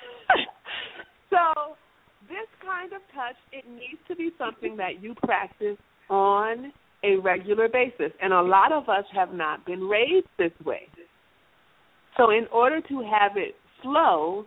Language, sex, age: English, female, 50-69